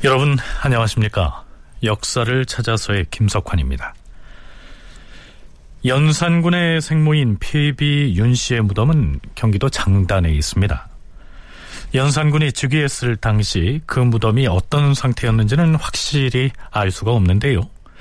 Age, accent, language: 40-59, native, Korean